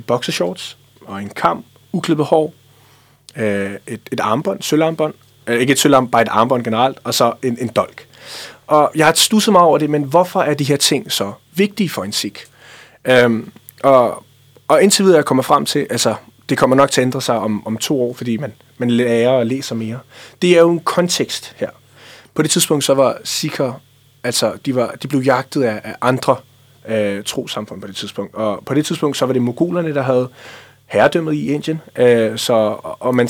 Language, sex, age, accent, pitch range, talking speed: Danish, male, 30-49, native, 120-155 Hz, 200 wpm